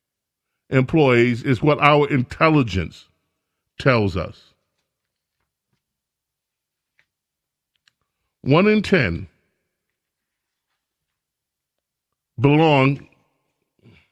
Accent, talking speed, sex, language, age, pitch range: American, 45 wpm, male, English, 40-59, 115-150 Hz